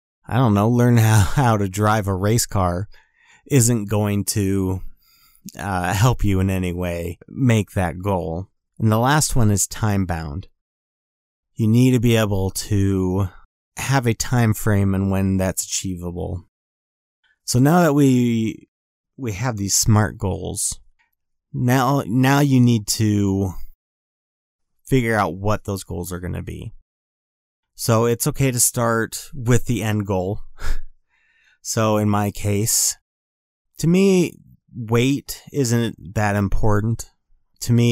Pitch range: 95-120 Hz